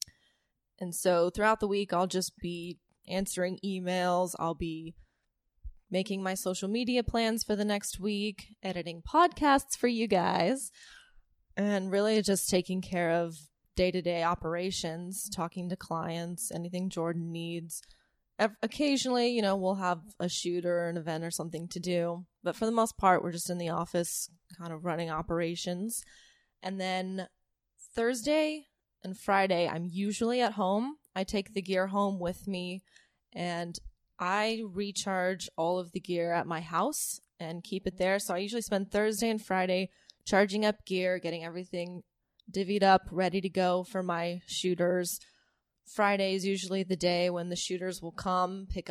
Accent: American